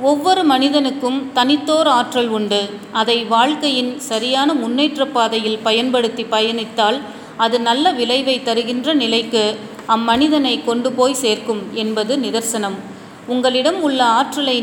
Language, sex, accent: Tamil, female, native